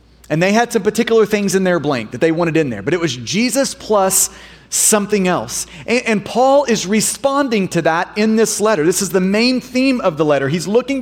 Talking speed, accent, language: 225 wpm, American, English